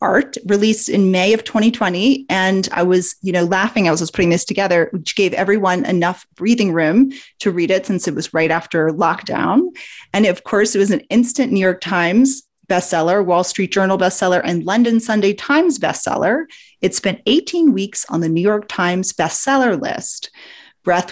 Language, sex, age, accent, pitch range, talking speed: English, female, 30-49, American, 175-230 Hz, 185 wpm